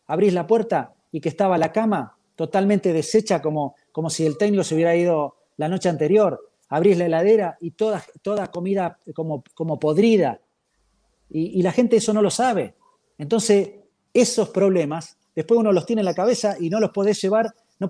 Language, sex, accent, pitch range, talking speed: Spanish, male, Argentinian, 160-205 Hz, 185 wpm